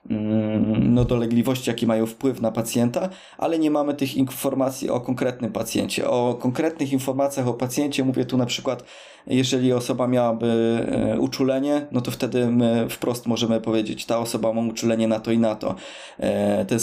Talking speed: 155 wpm